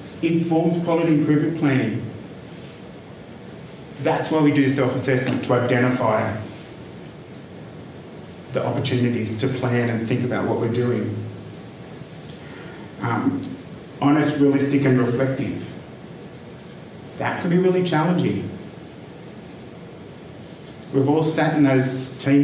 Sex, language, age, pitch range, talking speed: male, English, 30-49, 125-145 Hz, 100 wpm